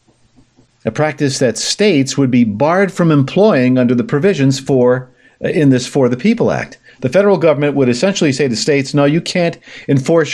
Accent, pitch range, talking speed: American, 125-170 Hz, 185 wpm